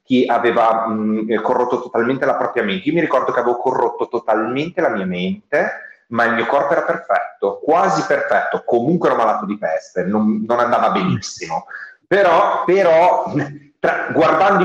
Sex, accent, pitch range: male, native, 110-145 Hz